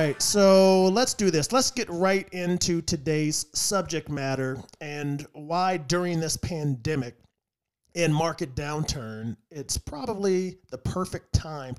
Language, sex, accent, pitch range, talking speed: English, male, American, 125-170 Hz, 120 wpm